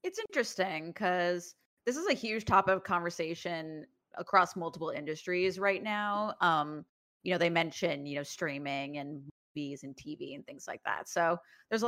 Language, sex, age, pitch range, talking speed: English, female, 30-49, 160-195 Hz, 170 wpm